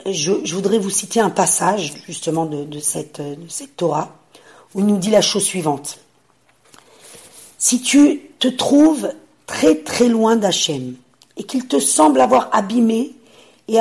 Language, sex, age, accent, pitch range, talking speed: French, female, 50-69, French, 165-245 Hz, 150 wpm